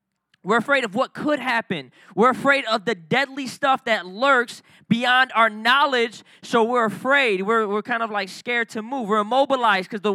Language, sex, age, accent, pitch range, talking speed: English, male, 20-39, American, 190-245 Hz, 190 wpm